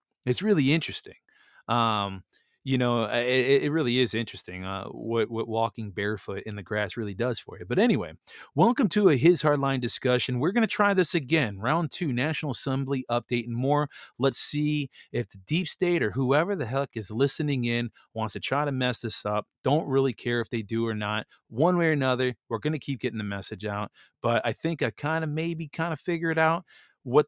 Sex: male